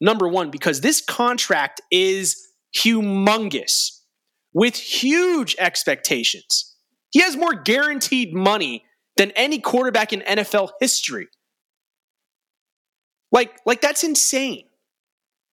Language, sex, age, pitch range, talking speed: English, male, 30-49, 190-270 Hz, 95 wpm